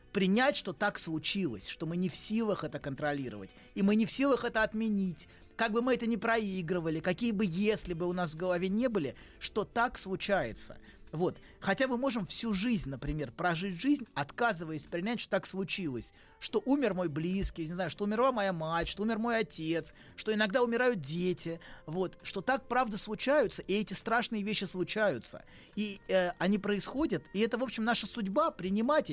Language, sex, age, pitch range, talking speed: Russian, male, 30-49, 175-230 Hz, 185 wpm